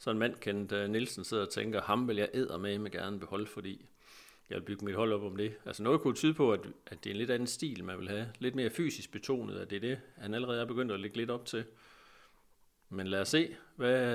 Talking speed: 270 wpm